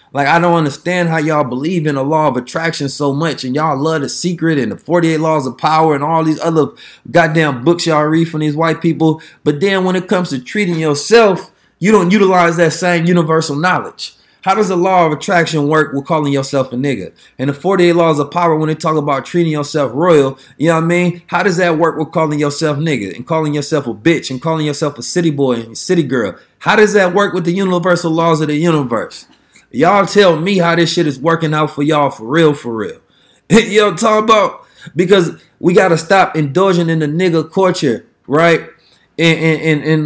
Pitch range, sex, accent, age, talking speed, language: 150-175 Hz, male, American, 20-39, 225 wpm, English